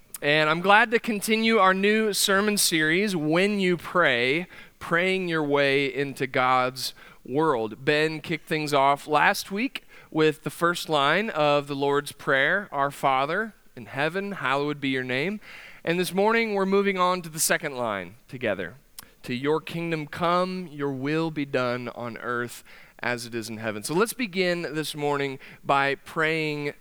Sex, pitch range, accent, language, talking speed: male, 130-165 Hz, American, English, 165 wpm